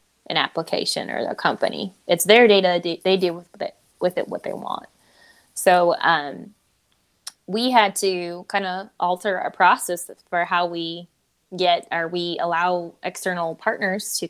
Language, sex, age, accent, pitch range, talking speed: English, female, 10-29, American, 165-200 Hz, 150 wpm